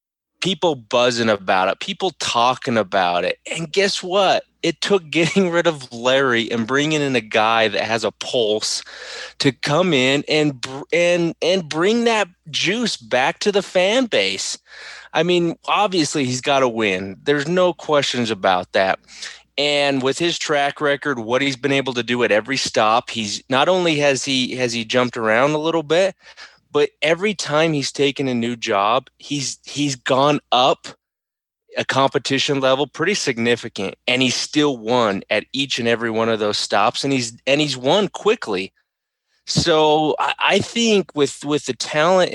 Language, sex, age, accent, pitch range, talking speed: English, male, 30-49, American, 120-165 Hz, 170 wpm